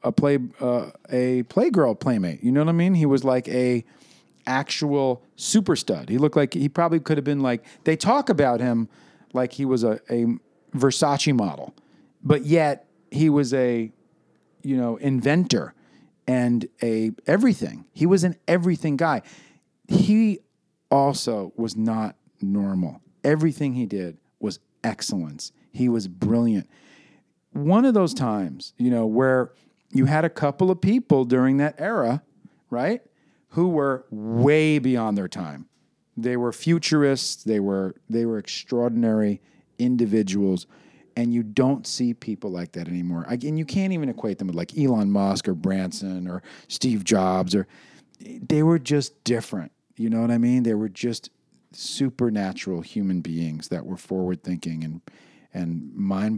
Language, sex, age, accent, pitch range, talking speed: English, male, 40-59, American, 110-150 Hz, 155 wpm